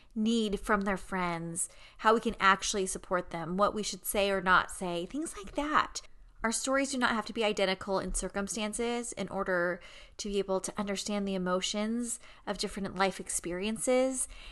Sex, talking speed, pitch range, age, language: female, 180 wpm, 190-225 Hz, 30-49, English